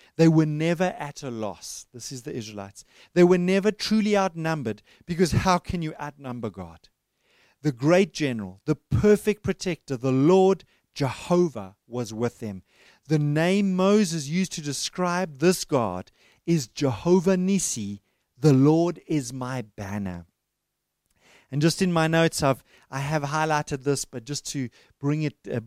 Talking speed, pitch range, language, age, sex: 150 wpm, 130-175 Hz, English, 30-49, male